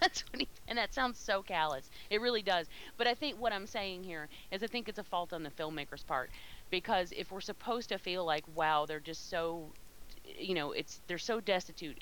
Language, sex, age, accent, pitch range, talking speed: English, female, 30-49, American, 165-230 Hz, 210 wpm